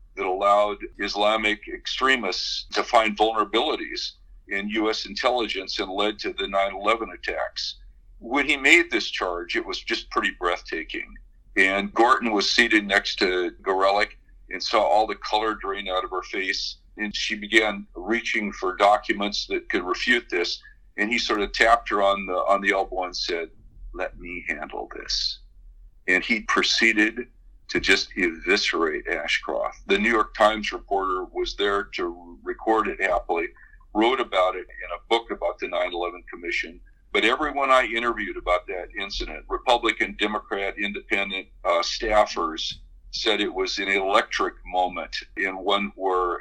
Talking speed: 155 wpm